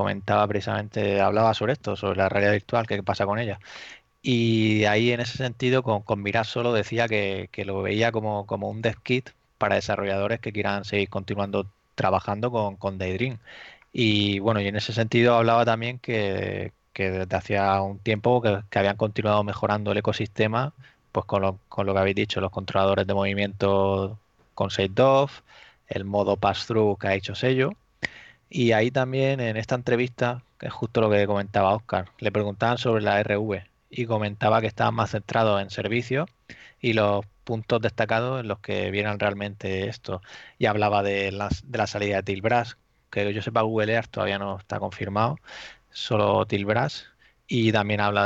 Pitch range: 100-115 Hz